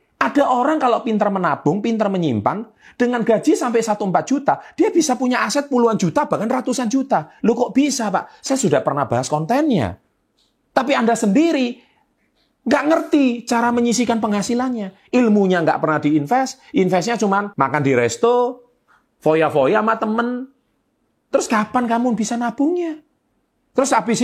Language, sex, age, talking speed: Indonesian, male, 30-49, 140 wpm